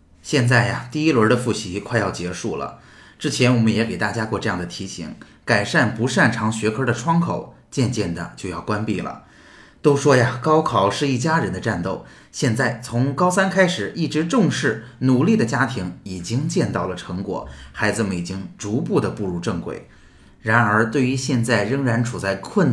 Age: 20-39